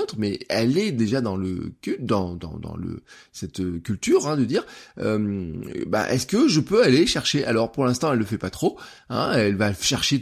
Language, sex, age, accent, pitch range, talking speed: French, male, 20-39, French, 115-155 Hz, 190 wpm